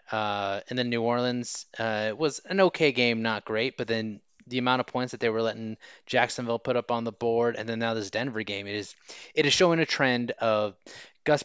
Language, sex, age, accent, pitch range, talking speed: English, male, 20-39, American, 110-140 Hz, 230 wpm